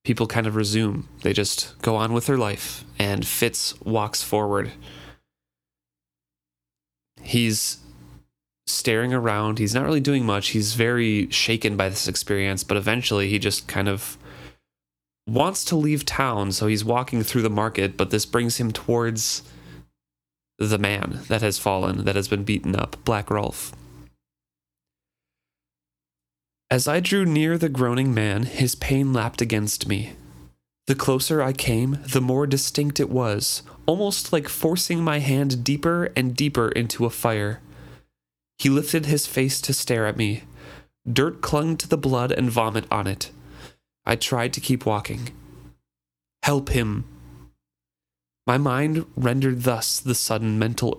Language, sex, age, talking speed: English, male, 20-39, 145 wpm